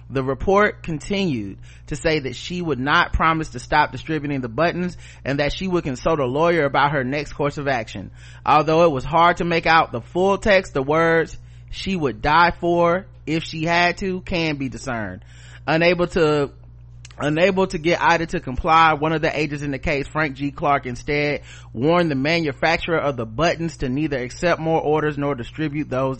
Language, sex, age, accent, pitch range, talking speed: English, male, 30-49, American, 115-150 Hz, 190 wpm